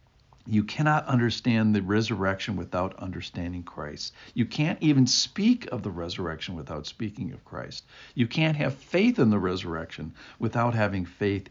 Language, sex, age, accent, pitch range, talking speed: English, male, 60-79, American, 105-135 Hz, 150 wpm